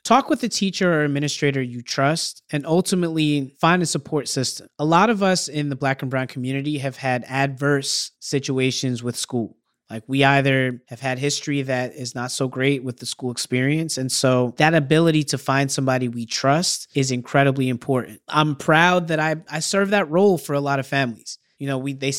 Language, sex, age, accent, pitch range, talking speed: English, male, 20-39, American, 140-175 Hz, 200 wpm